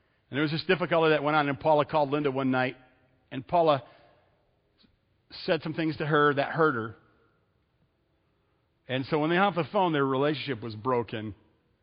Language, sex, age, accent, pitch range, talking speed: English, male, 50-69, American, 110-160 Hz, 180 wpm